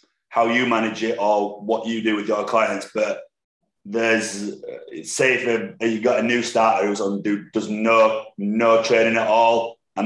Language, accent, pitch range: English, British, 105-120 Hz